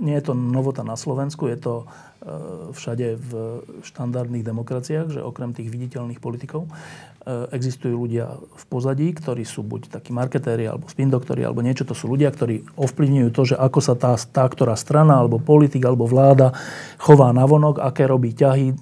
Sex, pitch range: male, 120-150 Hz